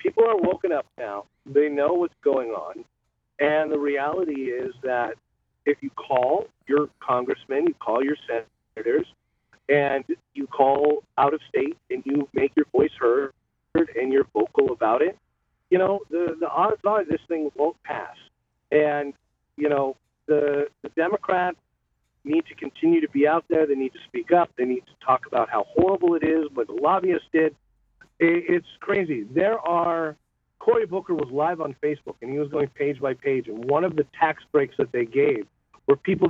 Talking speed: 185 wpm